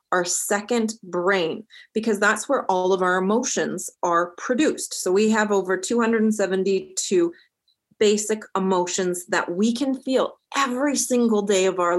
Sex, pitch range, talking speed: female, 195-265 Hz, 140 wpm